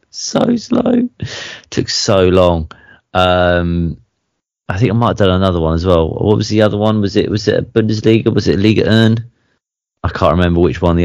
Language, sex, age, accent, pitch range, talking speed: English, male, 30-49, British, 85-105 Hz, 200 wpm